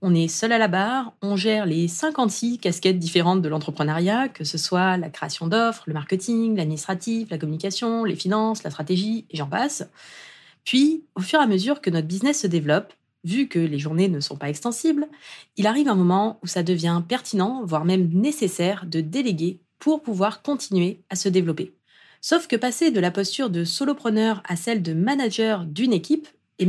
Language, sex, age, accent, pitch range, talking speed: French, female, 30-49, French, 180-235 Hz, 190 wpm